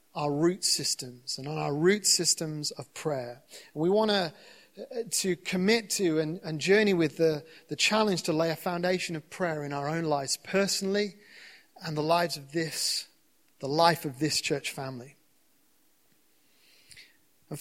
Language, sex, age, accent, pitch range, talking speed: English, male, 30-49, British, 155-200 Hz, 155 wpm